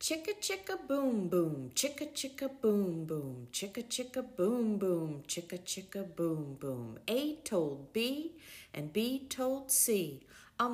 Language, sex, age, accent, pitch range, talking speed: English, female, 50-69, American, 170-280 Hz, 135 wpm